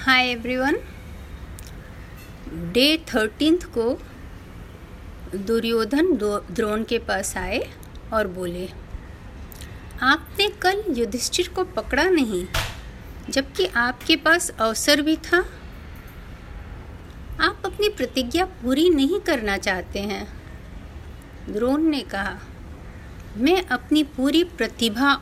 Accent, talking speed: native, 95 wpm